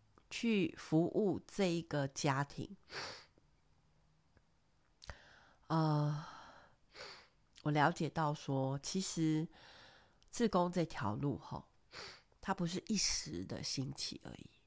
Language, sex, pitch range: Chinese, female, 135-165 Hz